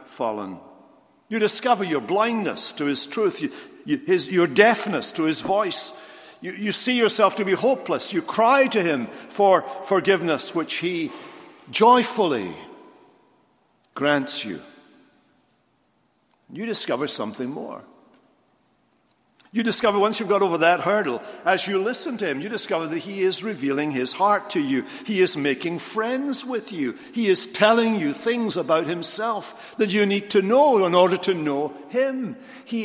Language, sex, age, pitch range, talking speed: English, male, 60-79, 175-235 Hz, 150 wpm